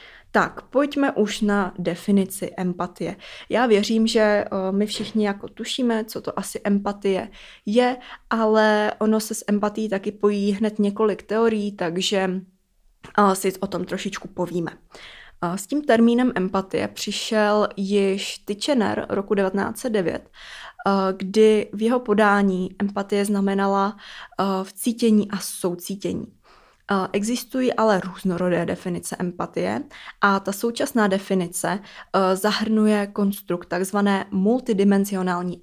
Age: 20-39